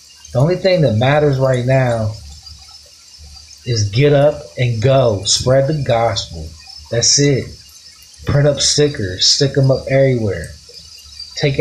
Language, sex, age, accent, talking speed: English, male, 30-49, American, 130 wpm